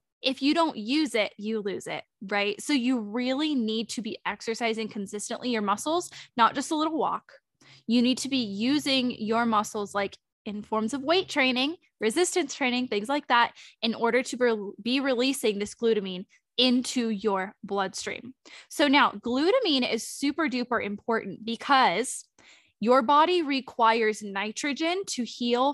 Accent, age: American, 10-29